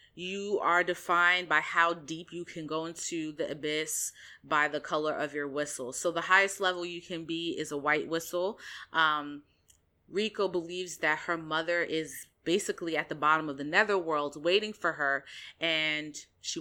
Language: English